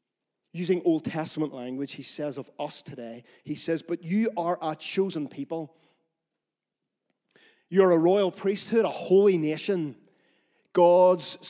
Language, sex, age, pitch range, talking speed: English, male, 30-49, 150-195 Hz, 130 wpm